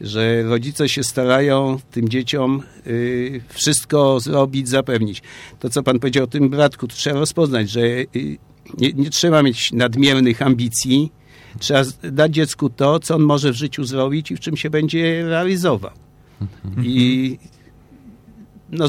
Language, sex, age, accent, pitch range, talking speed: Polish, male, 50-69, native, 120-140 Hz, 140 wpm